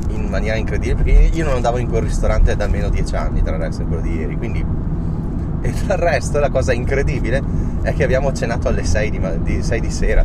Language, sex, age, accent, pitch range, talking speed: Italian, male, 30-49, native, 80-95 Hz, 215 wpm